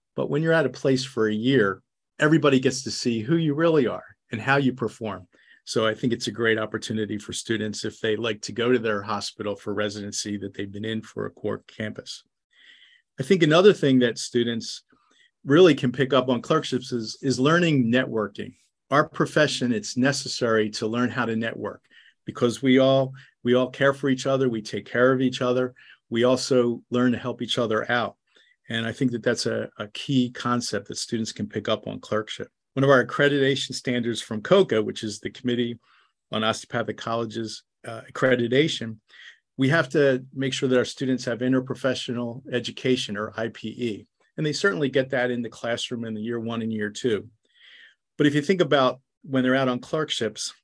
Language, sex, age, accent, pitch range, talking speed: English, male, 40-59, American, 110-135 Hz, 195 wpm